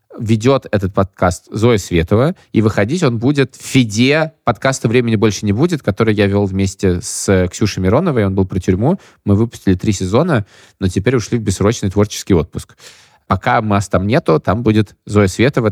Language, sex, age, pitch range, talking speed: Russian, male, 20-39, 100-125 Hz, 175 wpm